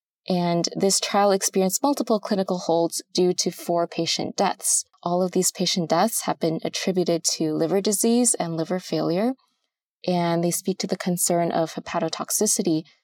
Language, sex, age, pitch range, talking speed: English, female, 20-39, 170-215 Hz, 155 wpm